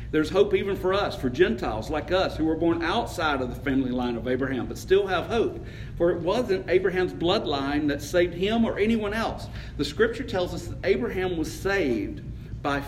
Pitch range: 120-155 Hz